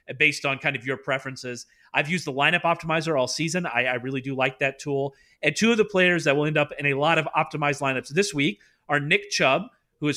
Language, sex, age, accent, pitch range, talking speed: English, male, 30-49, American, 135-170 Hz, 250 wpm